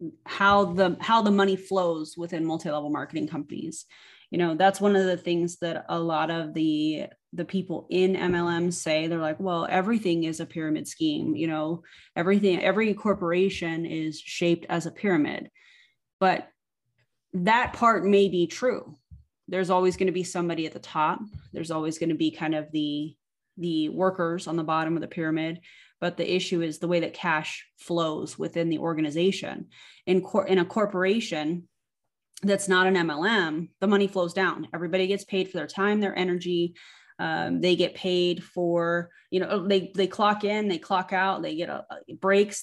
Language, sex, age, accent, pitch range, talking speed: English, female, 20-39, American, 165-195 Hz, 175 wpm